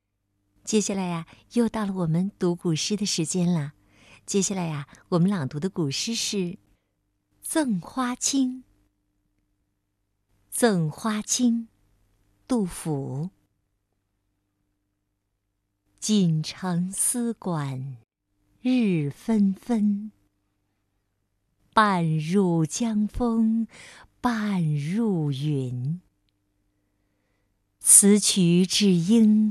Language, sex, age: Chinese, female, 50-69